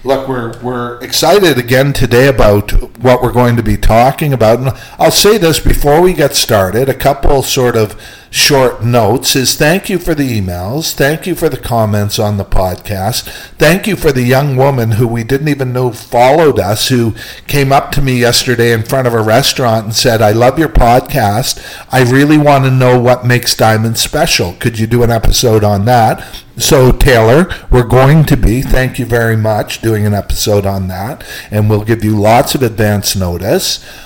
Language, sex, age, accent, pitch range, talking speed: English, male, 50-69, American, 110-135 Hz, 195 wpm